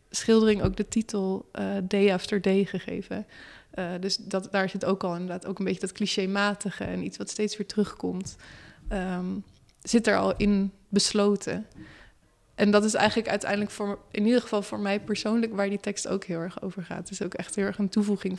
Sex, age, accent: female, 20-39, Dutch